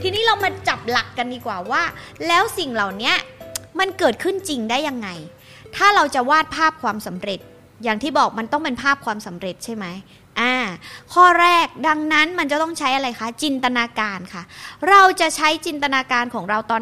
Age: 20-39